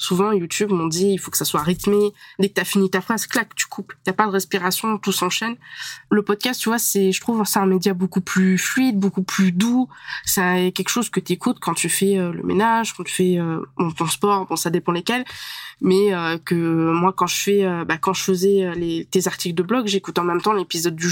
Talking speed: 245 wpm